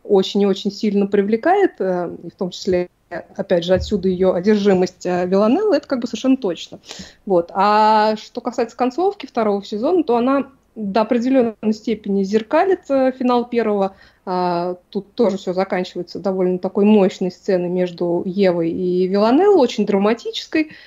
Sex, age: female, 20-39